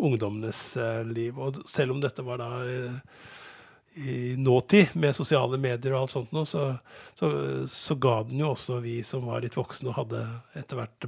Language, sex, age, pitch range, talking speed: English, male, 50-69, 120-150 Hz, 175 wpm